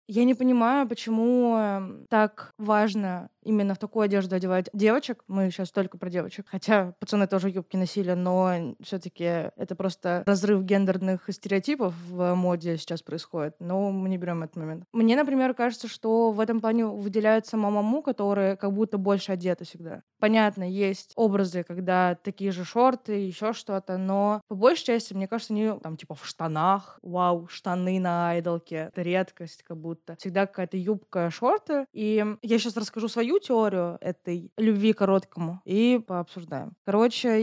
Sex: female